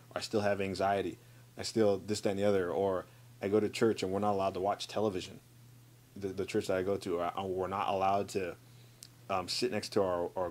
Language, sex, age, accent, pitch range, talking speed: English, male, 30-49, American, 95-120 Hz, 245 wpm